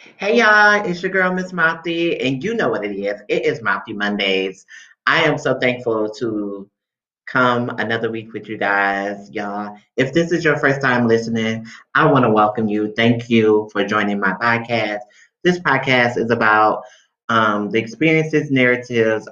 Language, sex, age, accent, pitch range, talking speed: English, male, 30-49, American, 100-125 Hz, 170 wpm